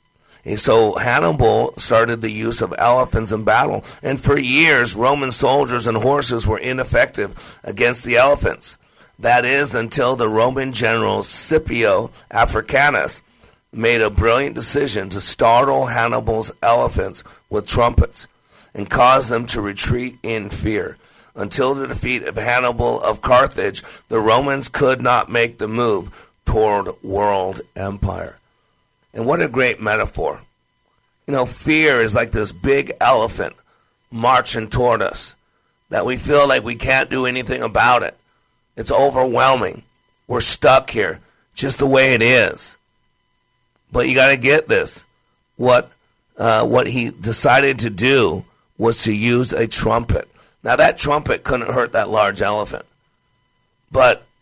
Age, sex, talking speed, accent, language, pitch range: 50-69, male, 140 wpm, American, English, 110-130 Hz